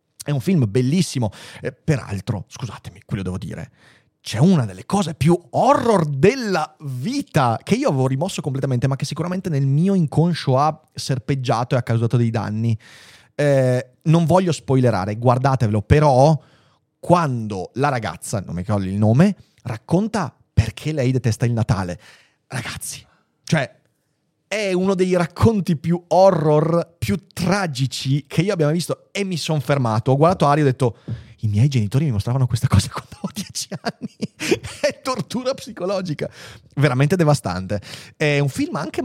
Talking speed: 155 wpm